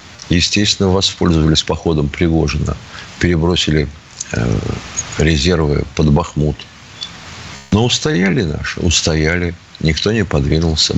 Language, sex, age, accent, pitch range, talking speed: Russian, male, 50-69, native, 80-110 Hz, 80 wpm